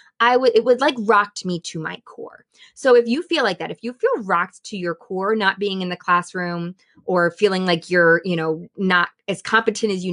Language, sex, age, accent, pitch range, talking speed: English, female, 20-39, American, 180-250 Hz, 230 wpm